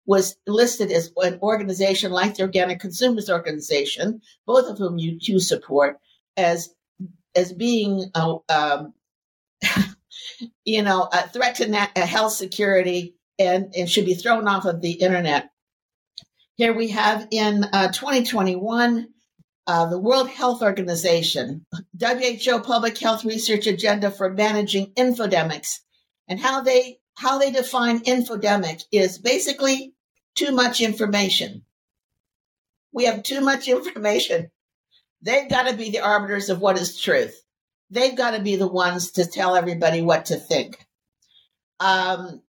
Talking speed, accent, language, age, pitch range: 135 wpm, American, English, 60-79, 185-235 Hz